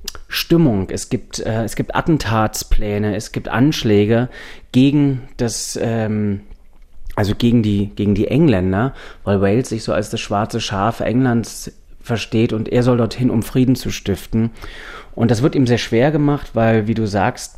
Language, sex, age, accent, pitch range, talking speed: German, male, 30-49, German, 100-120 Hz, 165 wpm